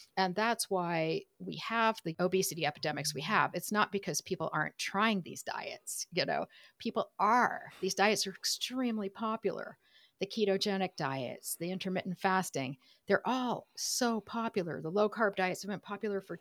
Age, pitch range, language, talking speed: 50-69, 170-205 Hz, English, 160 wpm